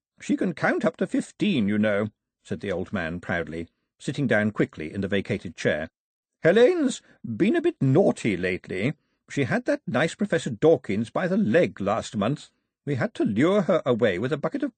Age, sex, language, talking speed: 50-69, male, English, 195 wpm